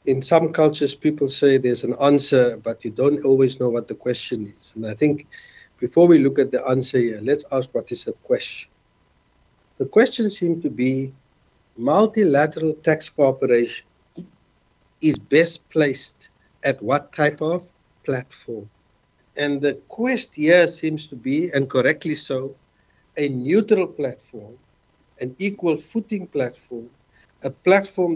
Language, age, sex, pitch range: English, 60-79, male, 130-165 Hz